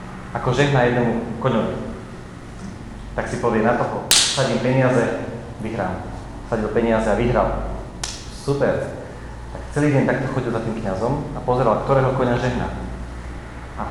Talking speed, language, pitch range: 135 wpm, Czech, 110-130 Hz